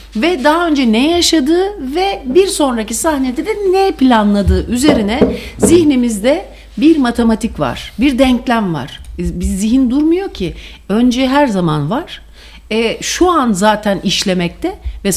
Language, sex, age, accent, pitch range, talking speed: English, female, 60-79, Turkish, 170-260 Hz, 135 wpm